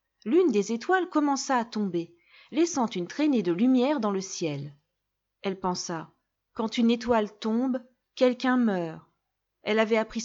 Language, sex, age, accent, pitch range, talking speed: French, female, 40-59, French, 180-260 Hz, 145 wpm